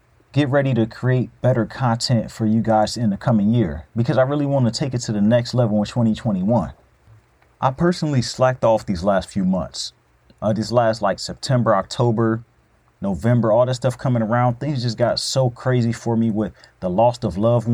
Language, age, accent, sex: English, 30-49, American, male